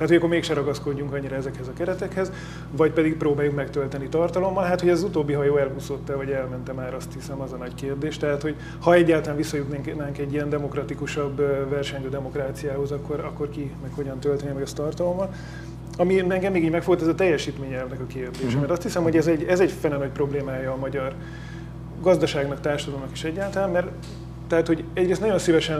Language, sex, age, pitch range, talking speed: Hungarian, male, 30-49, 140-165 Hz, 185 wpm